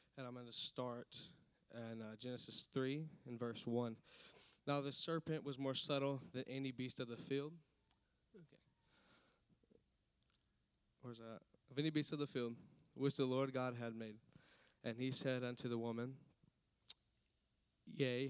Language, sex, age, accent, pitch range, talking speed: English, male, 10-29, American, 120-145 Hz, 155 wpm